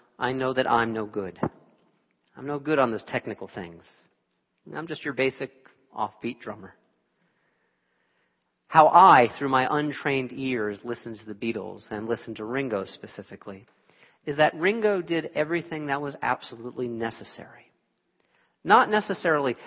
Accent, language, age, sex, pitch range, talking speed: American, English, 40-59, male, 115-160 Hz, 135 wpm